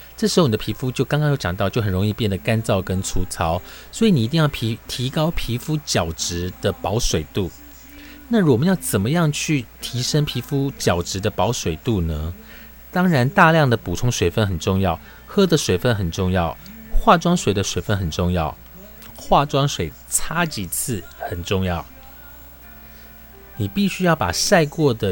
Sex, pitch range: male, 90-140 Hz